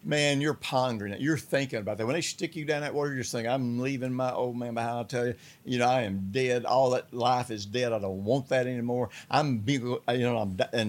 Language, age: English, 60-79